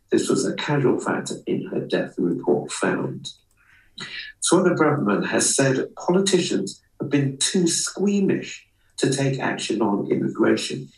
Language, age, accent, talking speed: English, 50-69, British, 135 wpm